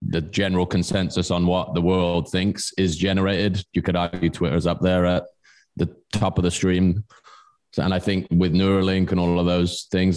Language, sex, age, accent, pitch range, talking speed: English, male, 20-39, British, 85-95 Hz, 195 wpm